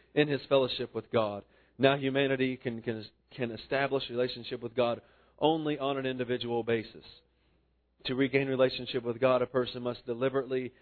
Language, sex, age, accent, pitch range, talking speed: English, male, 40-59, American, 110-130 Hz, 155 wpm